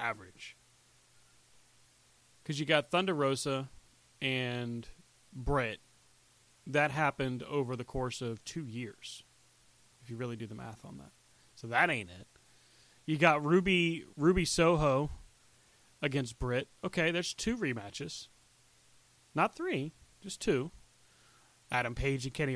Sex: male